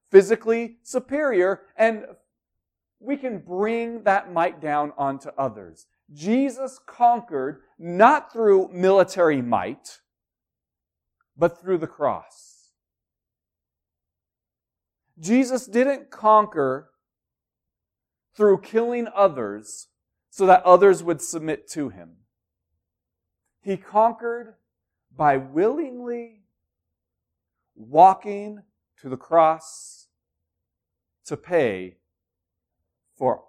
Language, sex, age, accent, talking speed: English, male, 40-59, American, 80 wpm